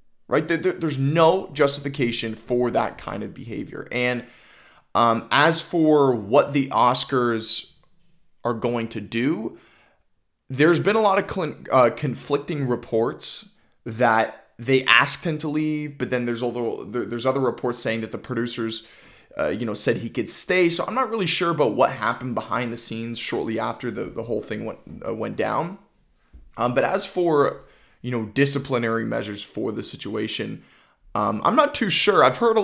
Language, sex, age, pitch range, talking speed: English, male, 20-39, 115-155 Hz, 170 wpm